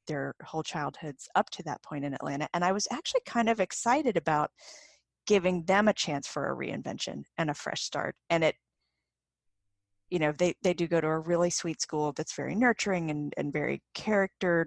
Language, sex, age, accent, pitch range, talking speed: English, female, 30-49, American, 150-190 Hz, 195 wpm